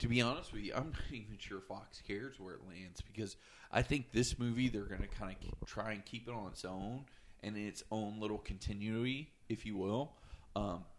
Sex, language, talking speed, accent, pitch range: male, English, 225 wpm, American, 100-120 Hz